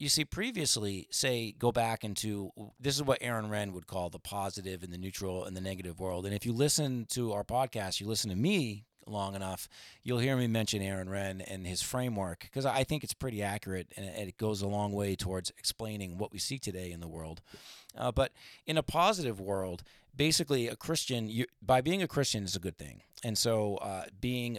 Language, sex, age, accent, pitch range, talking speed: English, male, 30-49, American, 95-120 Hz, 215 wpm